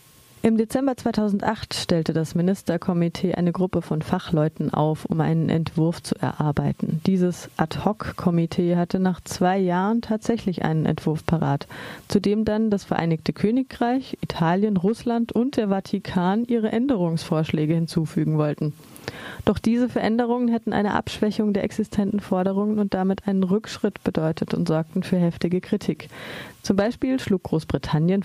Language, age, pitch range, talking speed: German, 30-49, 165-205 Hz, 135 wpm